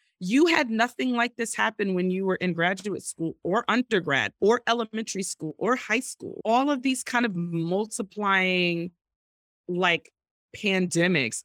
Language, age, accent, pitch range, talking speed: English, 30-49, American, 175-230 Hz, 145 wpm